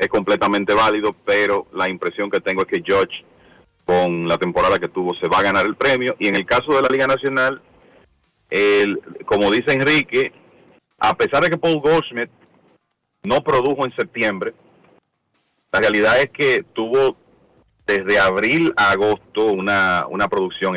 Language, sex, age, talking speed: Spanish, male, 40-59, 160 wpm